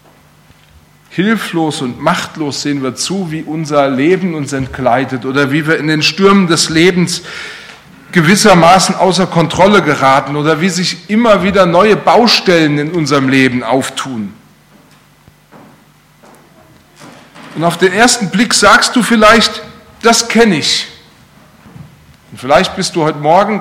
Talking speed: 130 wpm